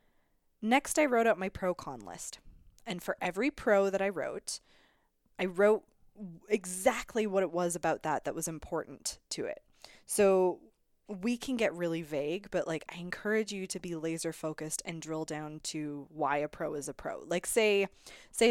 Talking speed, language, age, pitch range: 180 wpm, English, 20-39, 165-215 Hz